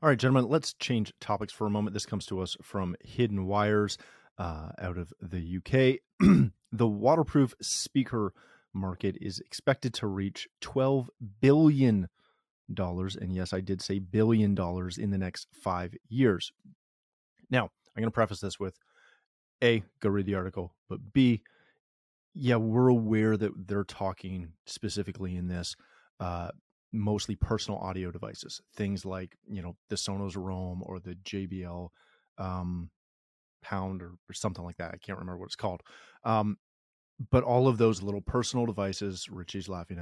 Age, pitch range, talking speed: 30-49, 95-110 Hz, 155 wpm